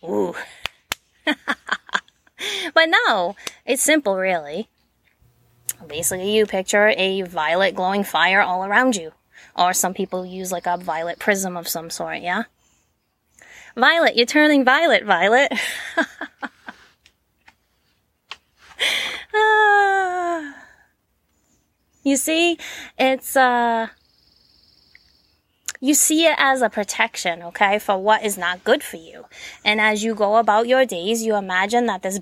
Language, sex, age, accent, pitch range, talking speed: English, female, 20-39, American, 180-260 Hz, 115 wpm